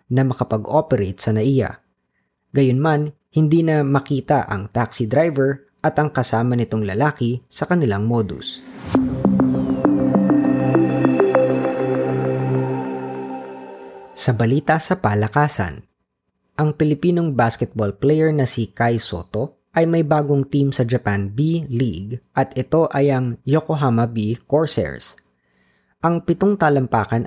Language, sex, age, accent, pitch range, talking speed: Filipino, female, 20-39, native, 100-145 Hz, 110 wpm